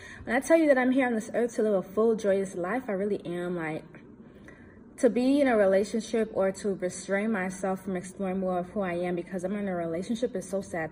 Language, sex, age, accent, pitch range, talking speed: English, female, 20-39, American, 190-240 Hz, 240 wpm